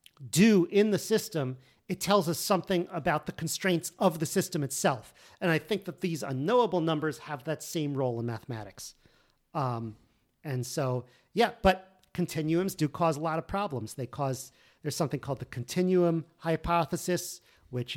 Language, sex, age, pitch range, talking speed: English, male, 40-59, 135-170 Hz, 165 wpm